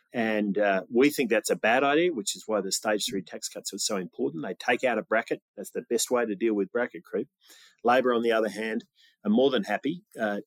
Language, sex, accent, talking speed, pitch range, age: English, male, Australian, 245 wpm, 105-125 Hz, 30-49